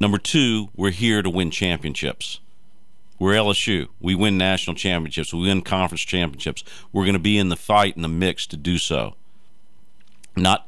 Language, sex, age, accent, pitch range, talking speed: English, male, 50-69, American, 90-120 Hz, 175 wpm